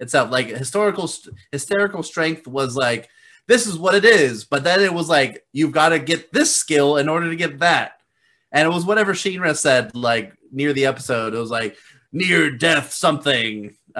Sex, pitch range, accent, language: male, 125-160 Hz, American, English